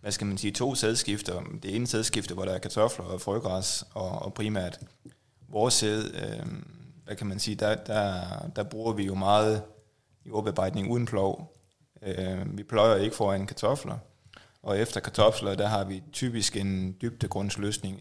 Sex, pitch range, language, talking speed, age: male, 95-110 Hz, Danish, 155 wpm, 20-39